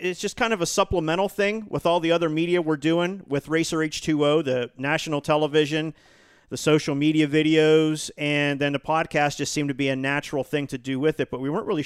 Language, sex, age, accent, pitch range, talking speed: English, male, 40-59, American, 140-175 Hz, 220 wpm